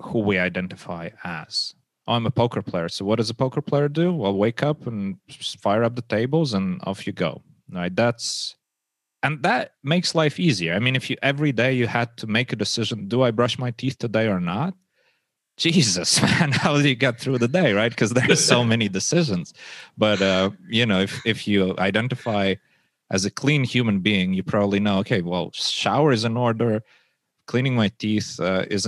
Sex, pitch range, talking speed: male, 95-125 Hz, 205 wpm